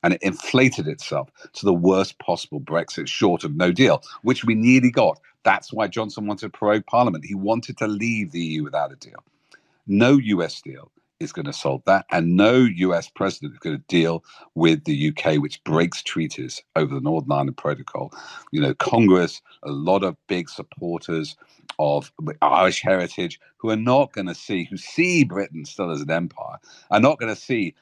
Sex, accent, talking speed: male, British, 190 wpm